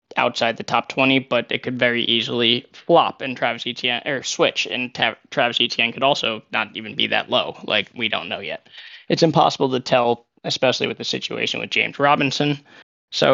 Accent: American